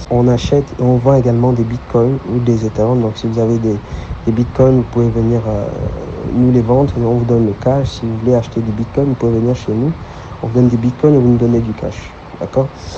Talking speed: 245 wpm